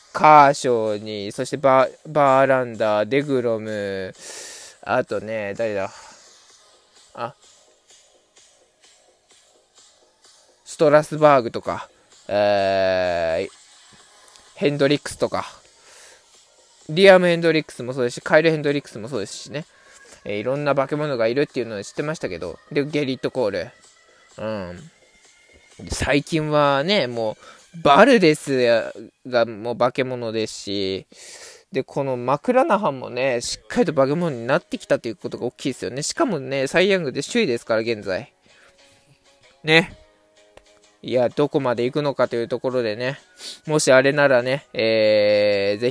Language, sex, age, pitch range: Japanese, male, 20-39, 110-150 Hz